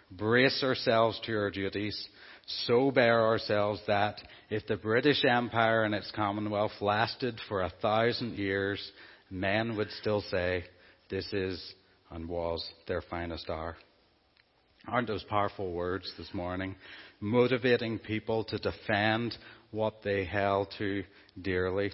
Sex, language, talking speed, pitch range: male, English, 130 wpm, 100-115 Hz